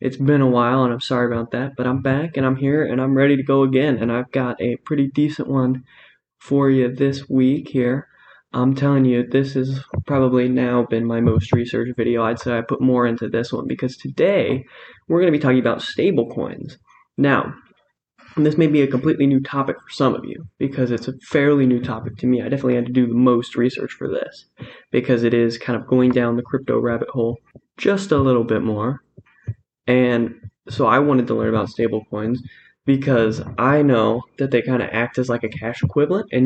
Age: 10-29